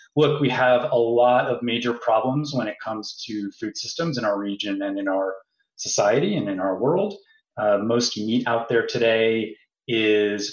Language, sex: English, male